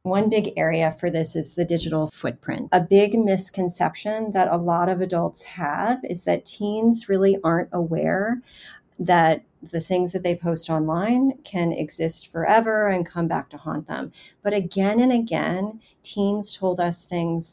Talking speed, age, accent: 165 wpm, 40-59, American